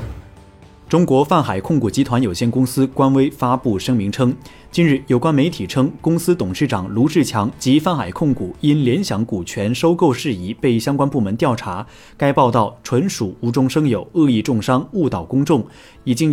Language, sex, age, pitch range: Chinese, male, 30-49, 110-155 Hz